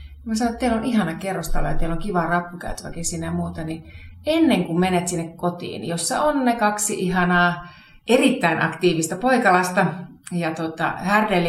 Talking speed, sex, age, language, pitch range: 165 wpm, female, 30-49, Finnish, 160-215 Hz